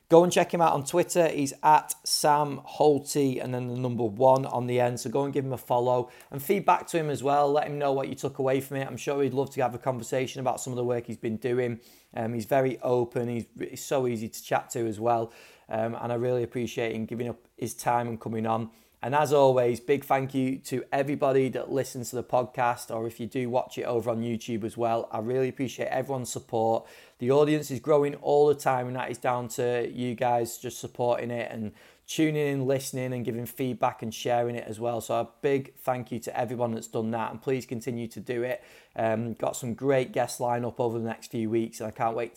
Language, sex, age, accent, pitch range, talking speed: English, male, 30-49, British, 115-135 Hz, 245 wpm